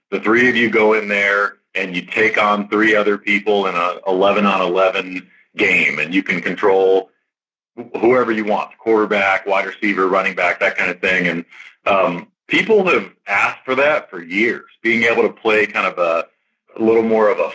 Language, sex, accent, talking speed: English, male, American, 200 wpm